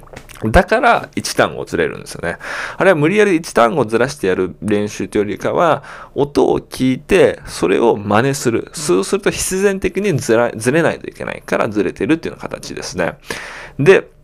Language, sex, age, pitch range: Japanese, male, 20-39, 110-180 Hz